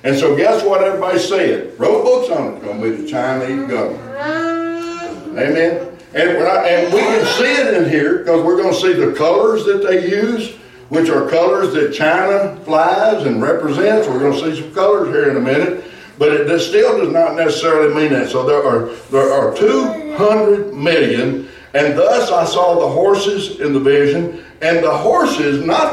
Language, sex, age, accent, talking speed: English, male, 60-79, American, 180 wpm